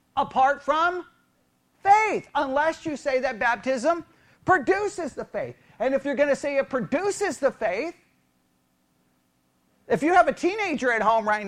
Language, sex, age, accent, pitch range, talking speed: English, male, 40-59, American, 235-345 Hz, 150 wpm